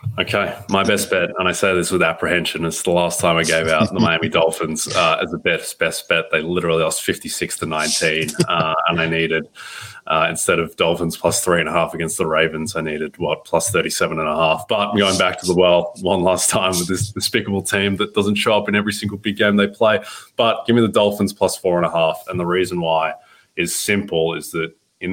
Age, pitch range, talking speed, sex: 20-39, 80-100 Hz, 235 wpm, male